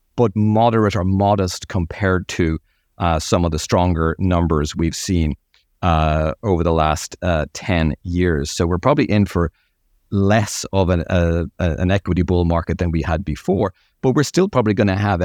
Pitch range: 85-100 Hz